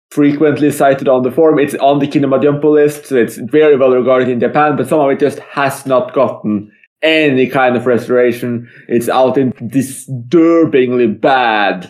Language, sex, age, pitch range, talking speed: English, male, 20-39, 125-155 Hz, 170 wpm